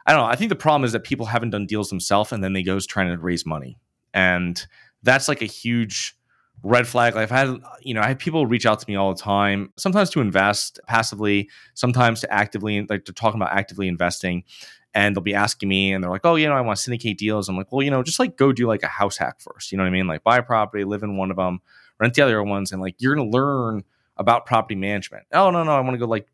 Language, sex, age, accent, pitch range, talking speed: English, male, 20-39, American, 95-125 Hz, 275 wpm